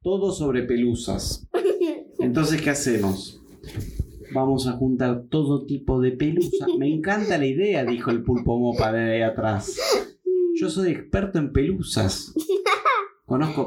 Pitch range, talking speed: 115-170 Hz, 130 wpm